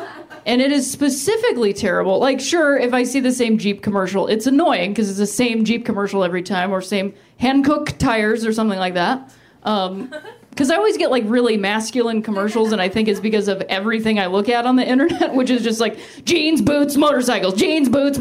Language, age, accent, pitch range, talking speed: English, 30-49, American, 215-315 Hz, 210 wpm